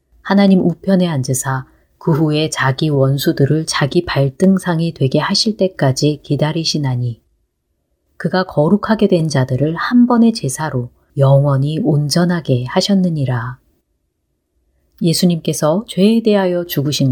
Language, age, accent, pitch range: Korean, 30-49, native, 130-185 Hz